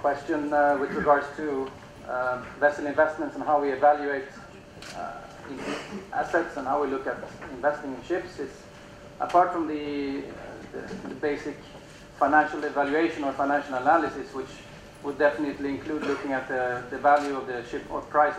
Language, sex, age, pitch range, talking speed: English, male, 40-59, 130-150 Hz, 155 wpm